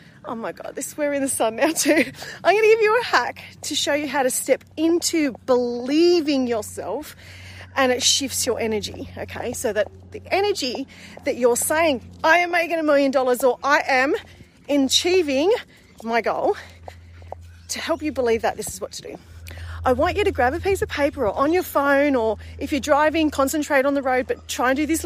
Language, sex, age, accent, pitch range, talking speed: English, female, 30-49, Australian, 250-330 Hz, 210 wpm